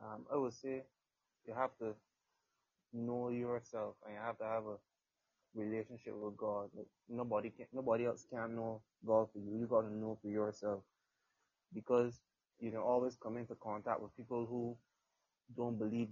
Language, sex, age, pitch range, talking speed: English, male, 20-39, 110-125 Hz, 170 wpm